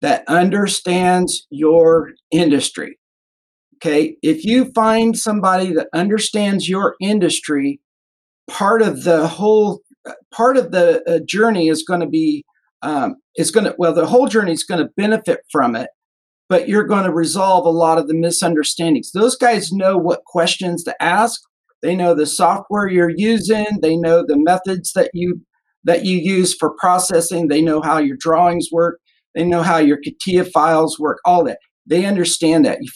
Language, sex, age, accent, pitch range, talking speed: English, male, 50-69, American, 165-210 Hz, 155 wpm